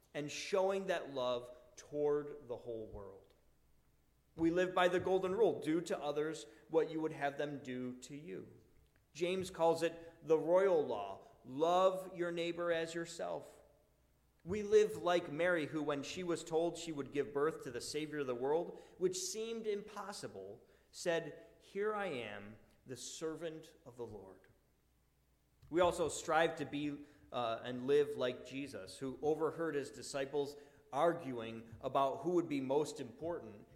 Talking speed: 155 wpm